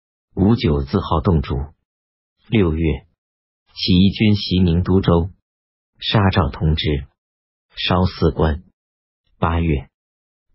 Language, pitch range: Chinese, 70-95 Hz